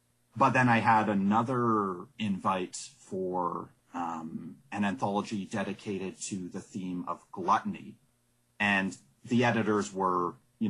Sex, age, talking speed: male, 30-49, 120 wpm